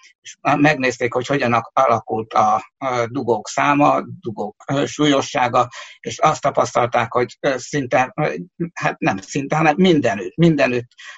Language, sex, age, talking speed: Hungarian, male, 60-79, 115 wpm